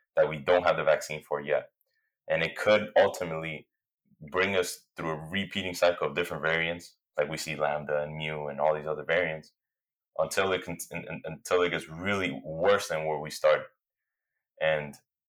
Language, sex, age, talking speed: English, male, 20-39, 175 wpm